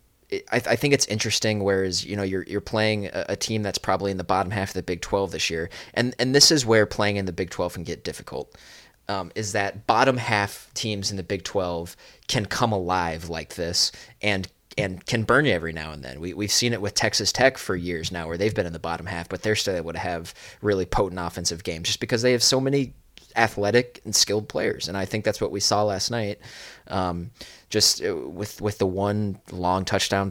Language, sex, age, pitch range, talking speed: English, male, 20-39, 95-115 Hz, 230 wpm